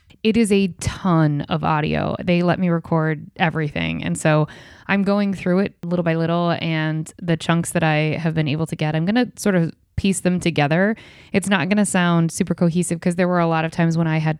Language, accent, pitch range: English, American, 160-185 Hz